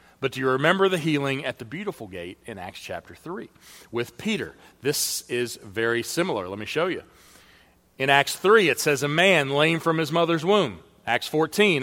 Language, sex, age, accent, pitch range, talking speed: English, male, 40-59, American, 125-170 Hz, 195 wpm